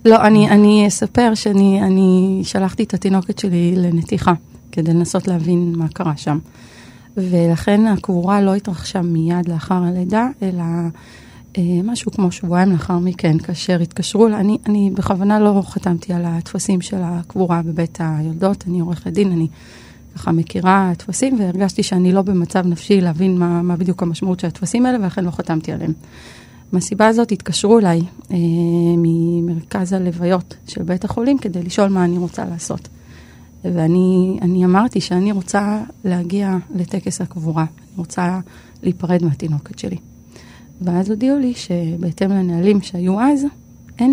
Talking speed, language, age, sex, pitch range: 140 wpm, Hebrew, 30-49, female, 175-205 Hz